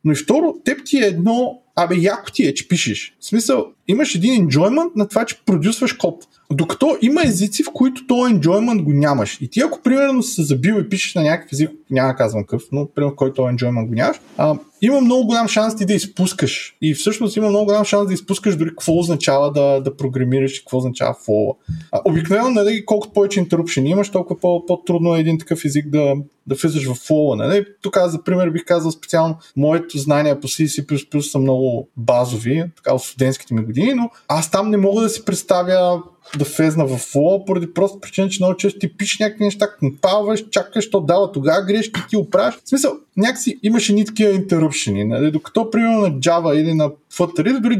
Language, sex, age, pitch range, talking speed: Bulgarian, male, 20-39, 145-210 Hz, 205 wpm